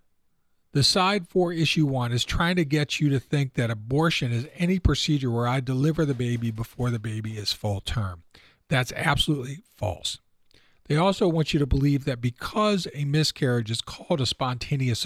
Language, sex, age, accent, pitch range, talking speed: English, male, 40-59, American, 115-145 Hz, 180 wpm